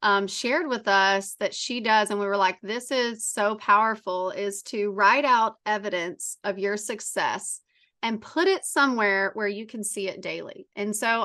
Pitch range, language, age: 200-245 Hz, English, 30-49